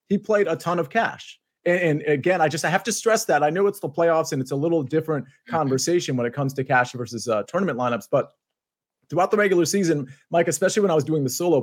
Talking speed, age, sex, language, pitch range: 250 wpm, 30-49, male, English, 130-170 Hz